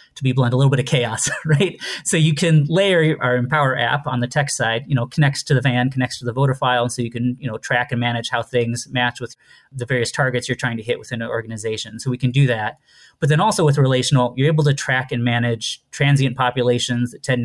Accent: American